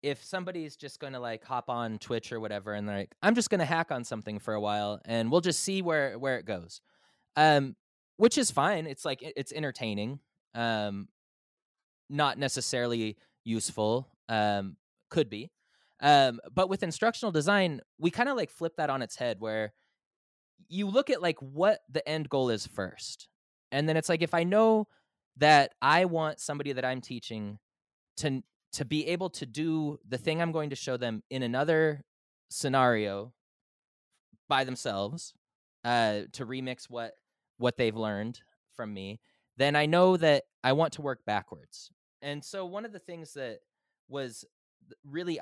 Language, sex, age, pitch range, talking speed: English, male, 20-39, 110-160 Hz, 170 wpm